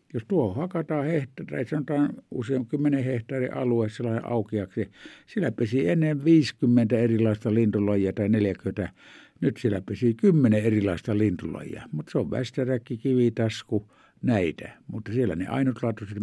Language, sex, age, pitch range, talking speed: Finnish, male, 60-79, 105-140 Hz, 130 wpm